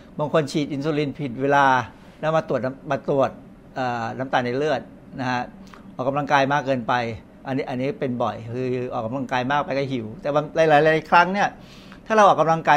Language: Thai